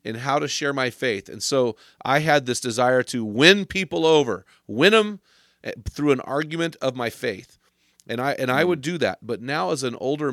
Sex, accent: male, American